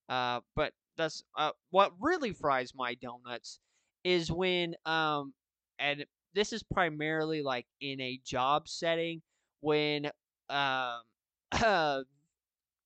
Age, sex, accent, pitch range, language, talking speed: 20-39, male, American, 140-195 Hz, English, 115 wpm